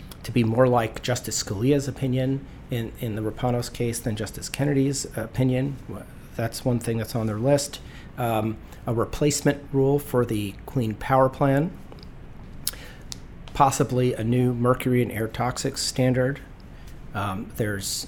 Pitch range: 110-130 Hz